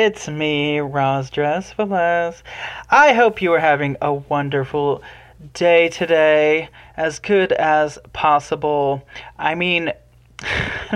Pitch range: 135-175 Hz